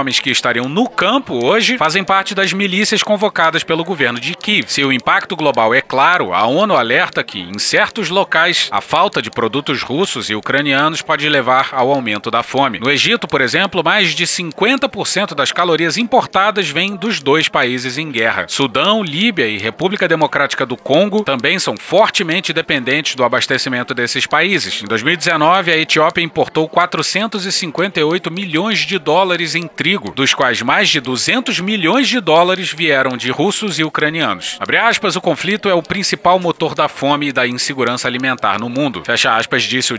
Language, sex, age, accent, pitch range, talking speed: Portuguese, male, 30-49, Brazilian, 135-185 Hz, 175 wpm